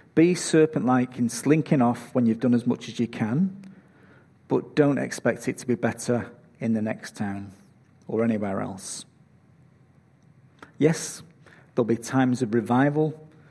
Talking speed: 145 wpm